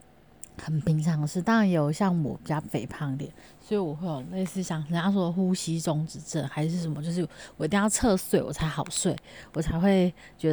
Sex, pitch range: female, 155-195 Hz